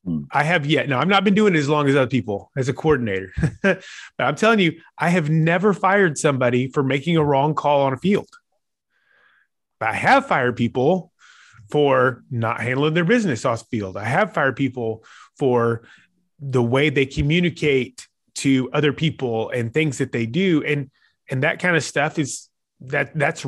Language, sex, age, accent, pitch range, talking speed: English, male, 30-49, American, 120-155 Hz, 185 wpm